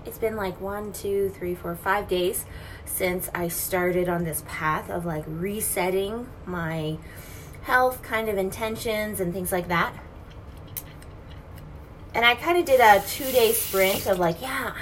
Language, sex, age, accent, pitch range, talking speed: English, female, 20-39, American, 170-220 Hz, 160 wpm